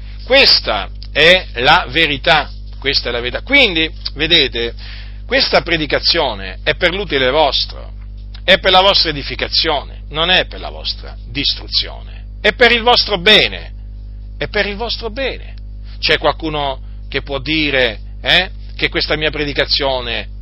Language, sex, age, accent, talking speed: Italian, male, 40-59, native, 140 wpm